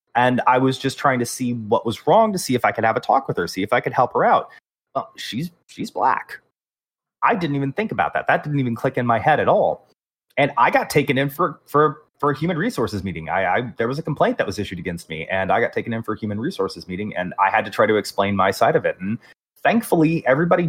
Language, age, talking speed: English, 30-49, 265 wpm